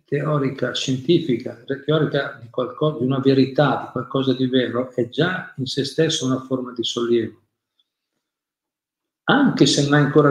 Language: Italian